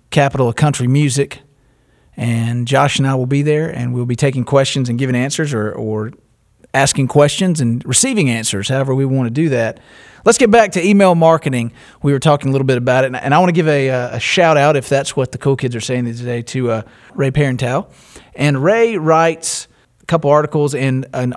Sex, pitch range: male, 125-150 Hz